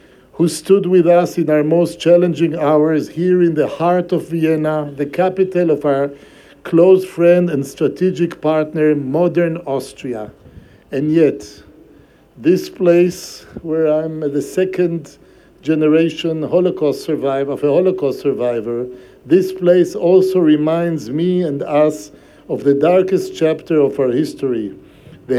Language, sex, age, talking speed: German, male, 60-79, 130 wpm